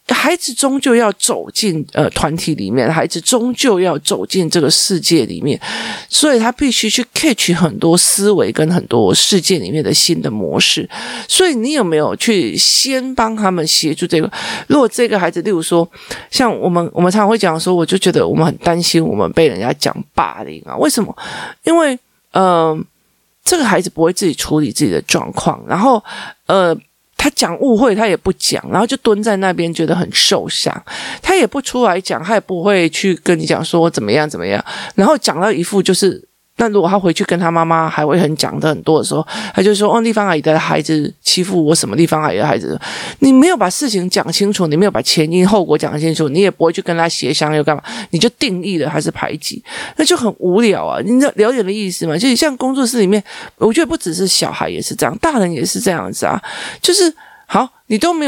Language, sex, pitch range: Chinese, male, 165-235 Hz